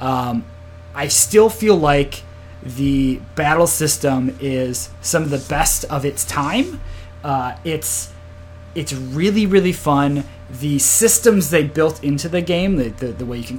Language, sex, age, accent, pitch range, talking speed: English, male, 30-49, American, 120-160 Hz, 155 wpm